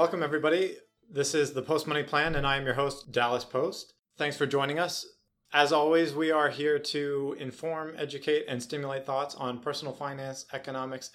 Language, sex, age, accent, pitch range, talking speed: English, male, 30-49, American, 125-150 Hz, 185 wpm